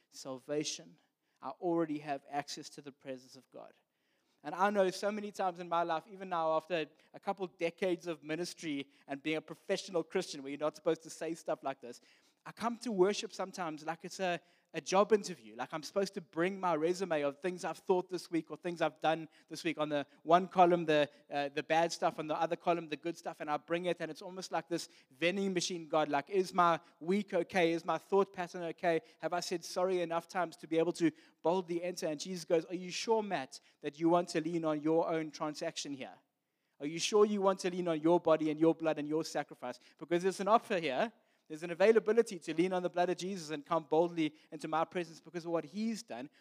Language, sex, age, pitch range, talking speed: English, male, 20-39, 140-175 Hz, 235 wpm